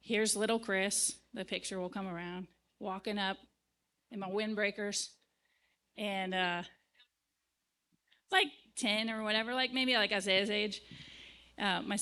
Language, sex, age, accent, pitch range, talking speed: English, female, 30-49, American, 185-220 Hz, 130 wpm